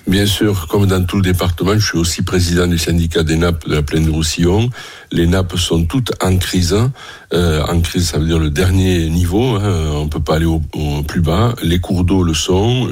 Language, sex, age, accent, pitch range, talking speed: French, male, 60-79, French, 80-95 Hz, 230 wpm